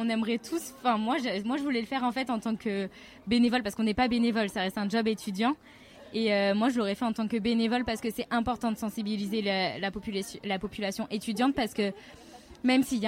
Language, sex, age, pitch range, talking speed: French, female, 20-39, 215-245 Hz, 245 wpm